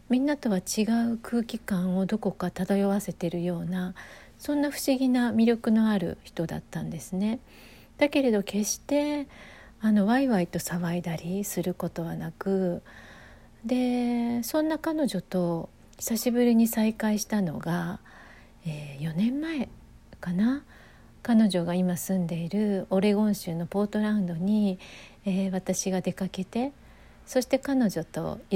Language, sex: Japanese, female